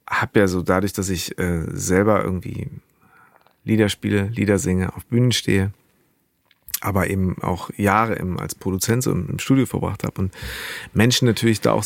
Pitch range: 105-125 Hz